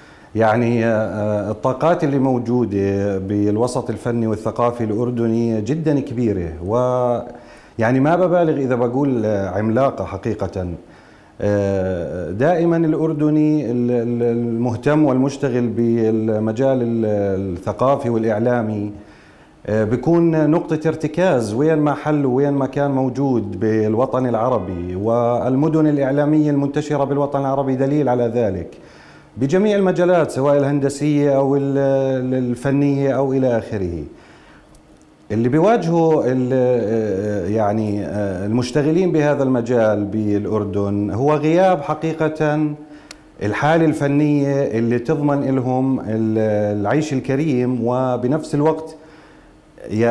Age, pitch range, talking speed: 30-49, 110-145 Hz, 85 wpm